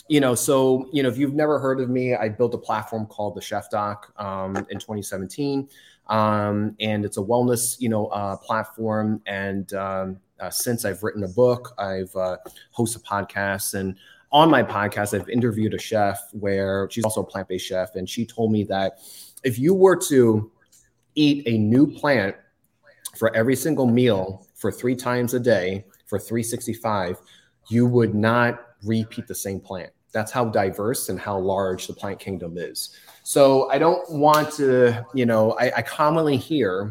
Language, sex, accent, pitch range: English, male, American, 100-120 Hz